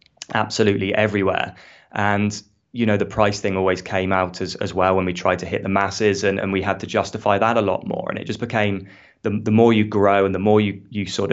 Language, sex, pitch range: English, male, 95-105 Hz